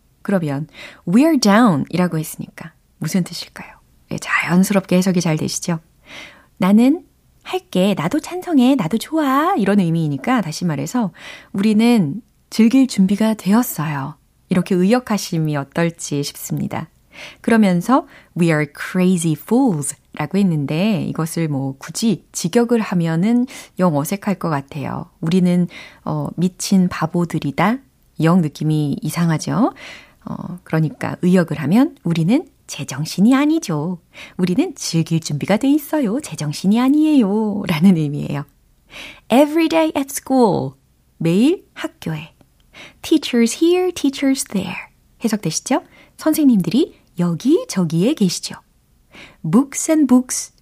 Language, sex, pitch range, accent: Korean, female, 165-260 Hz, native